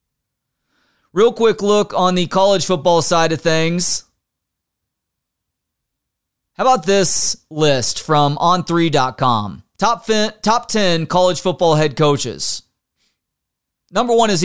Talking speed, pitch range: 110 wpm, 150-195 Hz